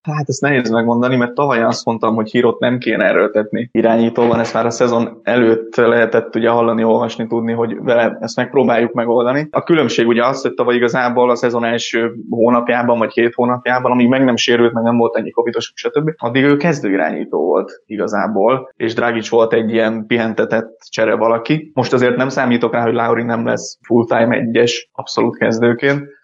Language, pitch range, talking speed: Hungarian, 115-125 Hz, 185 wpm